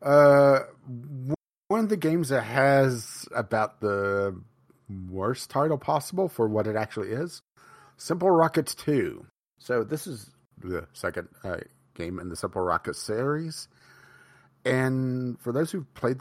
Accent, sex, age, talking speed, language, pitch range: American, male, 40-59, 135 wpm, English, 105-150 Hz